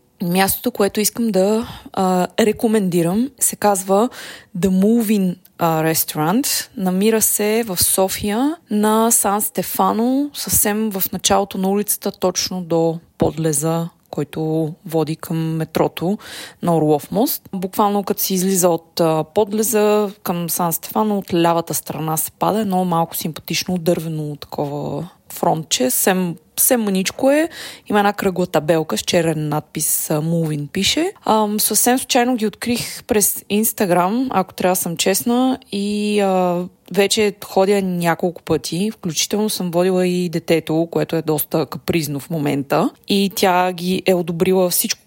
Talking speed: 130 wpm